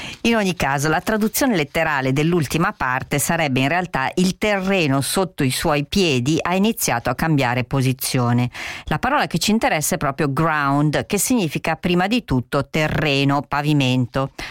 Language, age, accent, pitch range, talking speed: Italian, 40-59, native, 135-180 Hz, 155 wpm